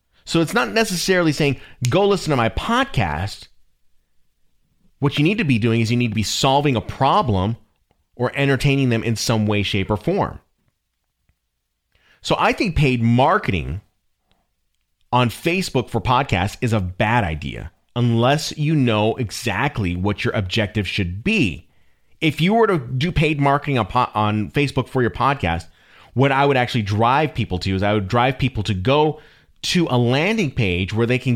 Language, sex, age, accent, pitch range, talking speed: English, male, 30-49, American, 105-135 Hz, 170 wpm